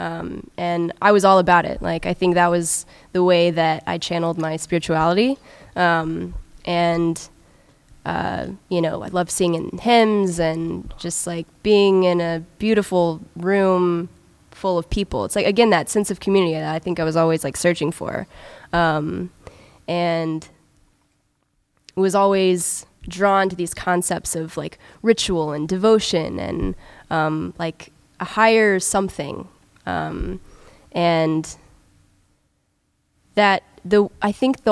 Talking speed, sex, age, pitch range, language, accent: 140 wpm, female, 10-29, 155-190 Hz, English, American